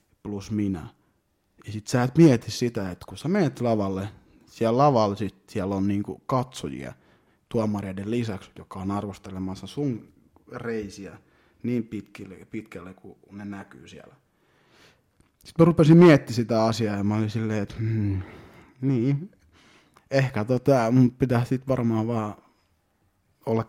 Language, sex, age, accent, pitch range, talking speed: Finnish, male, 30-49, native, 100-120 Hz, 135 wpm